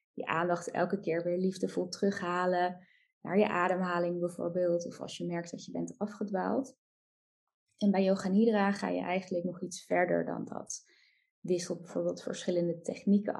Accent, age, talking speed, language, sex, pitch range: Dutch, 20-39, 155 wpm, Dutch, female, 170-205 Hz